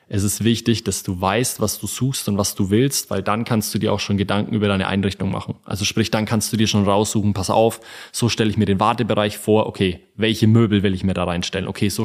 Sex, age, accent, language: male, 20-39, German, German